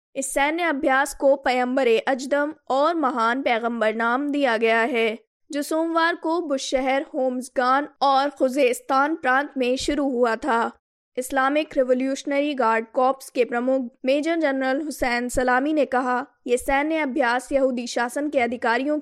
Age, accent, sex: 20-39, native, female